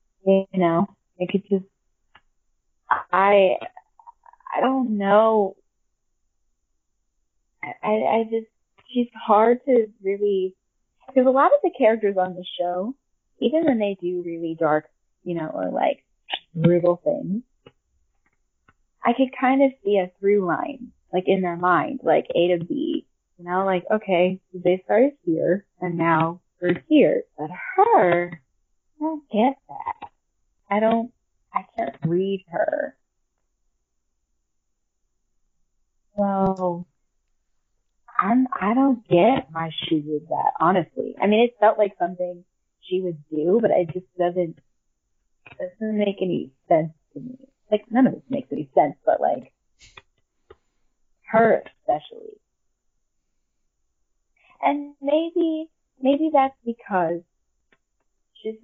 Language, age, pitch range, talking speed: English, 20-39, 170-250 Hz, 125 wpm